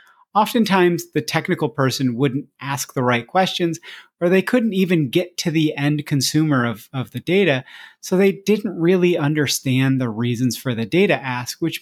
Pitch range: 135-180 Hz